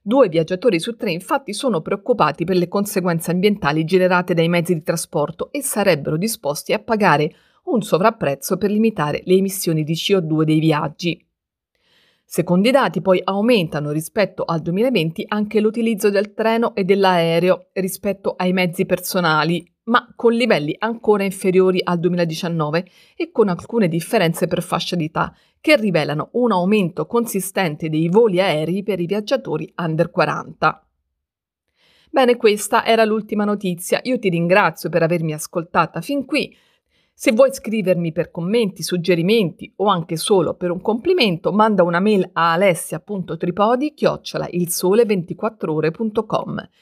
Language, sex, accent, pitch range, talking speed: Italian, female, native, 170-220 Hz, 135 wpm